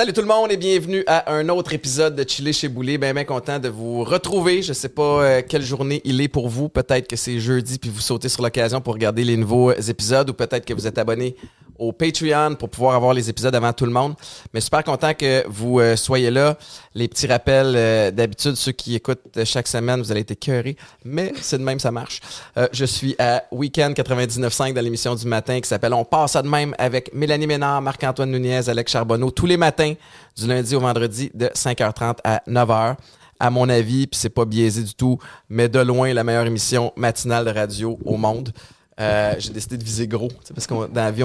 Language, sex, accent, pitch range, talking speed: French, male, Canadian, 115-140 Hz, 230 wpm